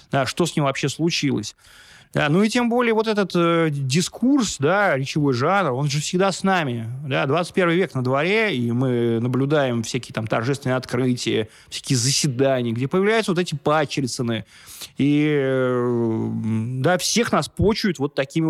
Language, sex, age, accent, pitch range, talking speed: Russian, male, 20-39, native, 130-175 Hz, 160 wpm